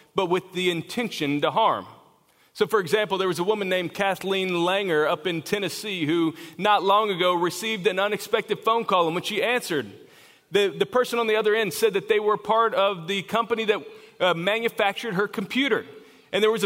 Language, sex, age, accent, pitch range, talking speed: German, male, 40-59, American, 185-225 Hz, 200 wpm